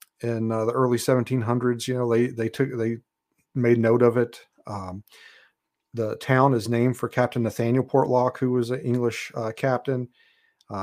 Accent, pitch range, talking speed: American, 115-135 Hz, 170 wpm